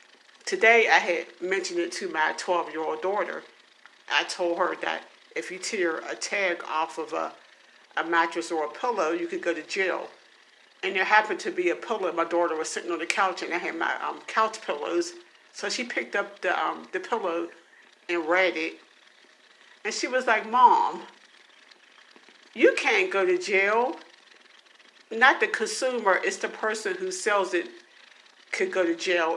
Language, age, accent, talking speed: English, 50-69, American, 175 wpm